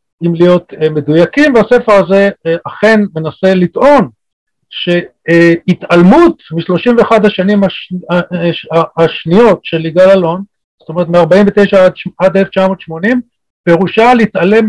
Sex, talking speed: male, 100 wpm